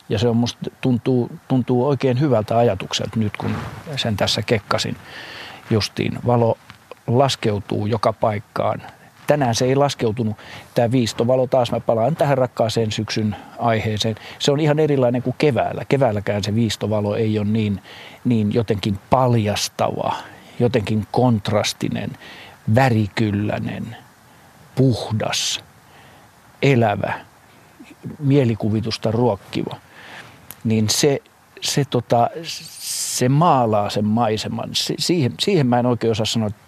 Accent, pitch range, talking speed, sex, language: native, 110-130 Hz, 115 wpm, male, Finnish